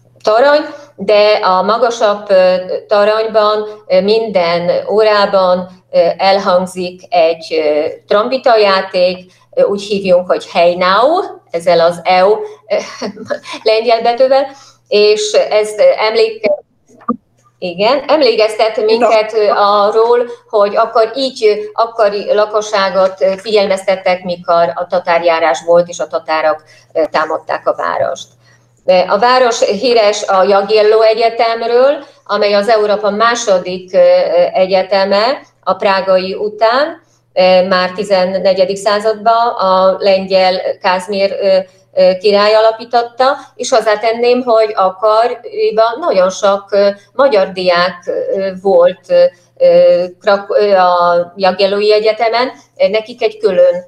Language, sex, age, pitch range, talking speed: Hungarian, female, 30-49, 185-230 Hz, 90 wpm